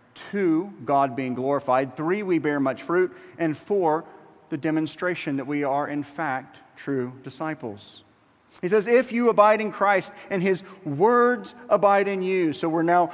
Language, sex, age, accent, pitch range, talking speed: English, male, 40-59, American, 135-180 Hz, 165 wpm